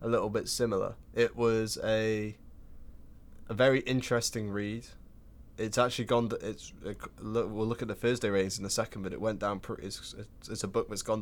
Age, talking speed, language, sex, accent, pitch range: 10-29, 200 wpm, English, male, British, 95-115 Hz